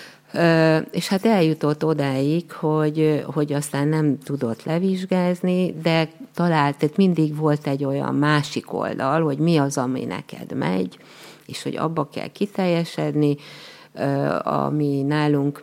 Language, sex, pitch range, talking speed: Hungarian, female, 140-180 Hz, 120 wpm